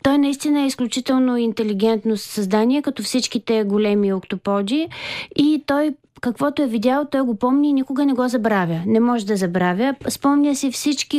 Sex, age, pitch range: female, 20-39, 225-270 Hz